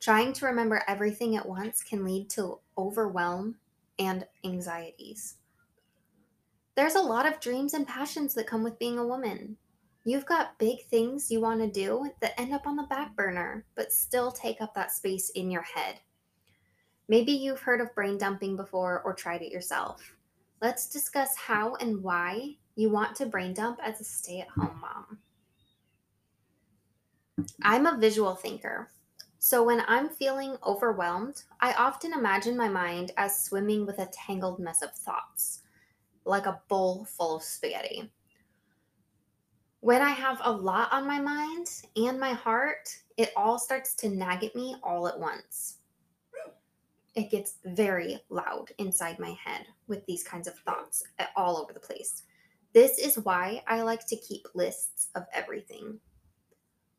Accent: American